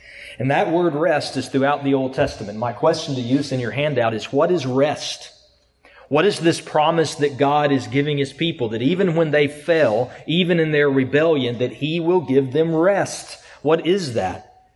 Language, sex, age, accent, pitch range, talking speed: English, male, 30-49, American, 135-175 Hz, 195 wpm